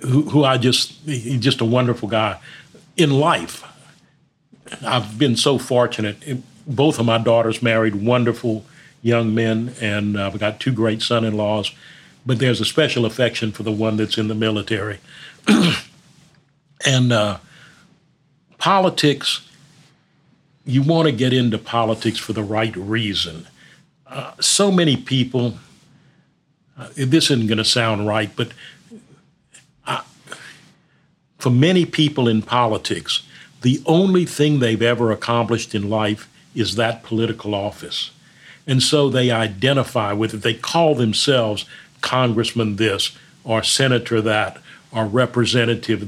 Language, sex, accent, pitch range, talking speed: English, male, American, 110-145 Hz, 130 wpm